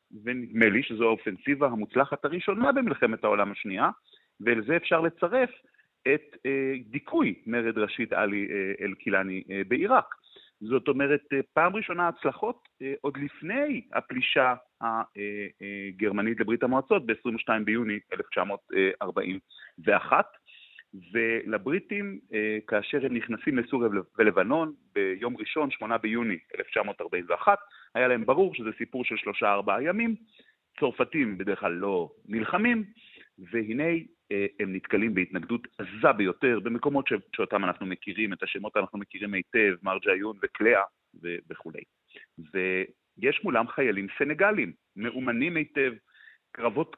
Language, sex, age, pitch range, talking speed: Hebrew, male, 40-59, 105-155 Hz, 105 wpm